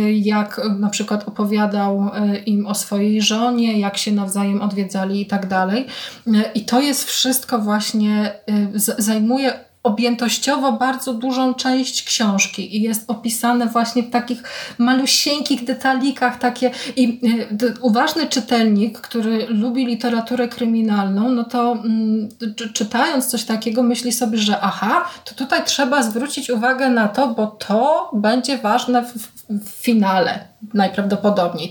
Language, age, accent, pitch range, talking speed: Polish, 20-39, native, 210-255 Hz, 125 wpm